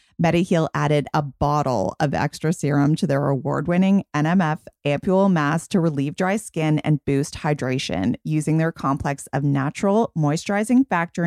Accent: American